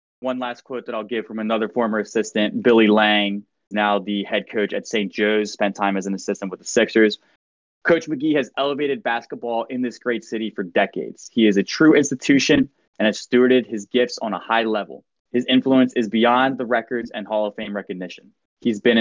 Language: English